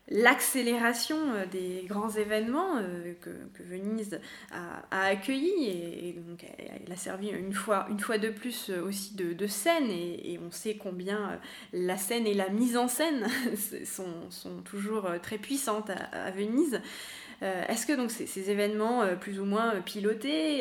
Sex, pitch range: female, 190-230 Hz